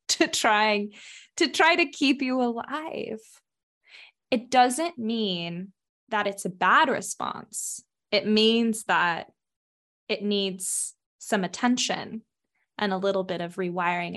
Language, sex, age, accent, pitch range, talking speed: English, female, 10-29, American, 185-235 Hz, 125 wpm